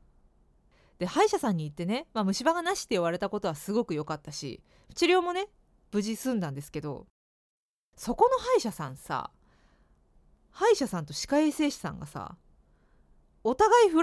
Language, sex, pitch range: Japanese, female, 190-305 Hz